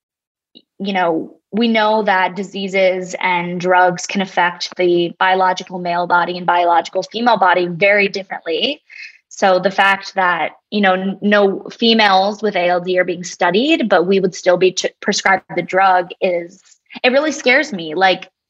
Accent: American